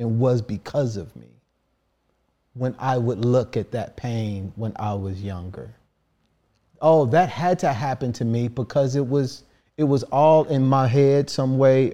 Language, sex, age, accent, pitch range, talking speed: English, male, 40-59, American, 100-135 Hz, 170 wpm